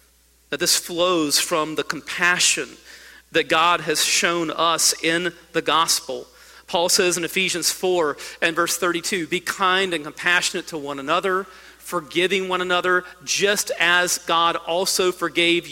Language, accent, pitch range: English, American, 145-225 Hz